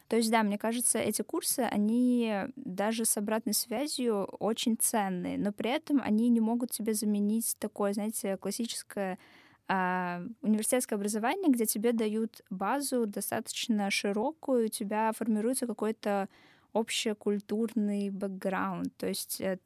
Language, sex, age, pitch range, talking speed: Russian, female, 10-29, 190-225 Hz, 130 wpm